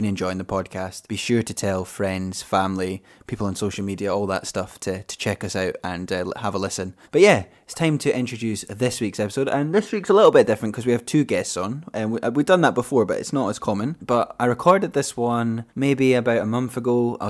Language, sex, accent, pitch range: English, male, British, 100-125 Hz